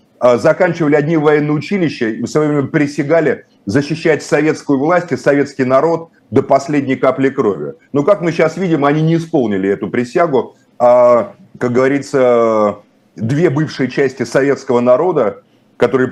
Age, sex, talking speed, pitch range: 30-49, male, 135 wpm, 120-145 Hz